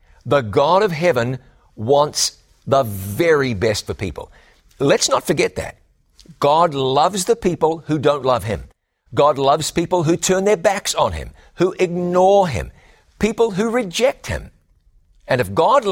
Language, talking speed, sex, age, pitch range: English, 155 wpm, male, 60-79, 120-175 Hz